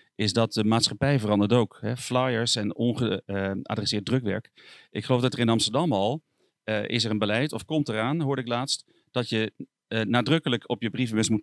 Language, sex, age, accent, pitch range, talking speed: Dutch, male, 40-59, Dutch, 105-130 Hz, 200 wpm